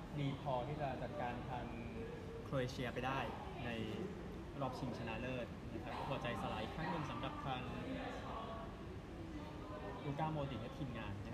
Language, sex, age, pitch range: Thai, male, 20-39, 120-145 Hz